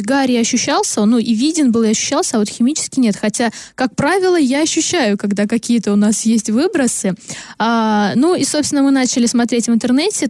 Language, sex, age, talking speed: Russian, female, 20-39, 180 wpm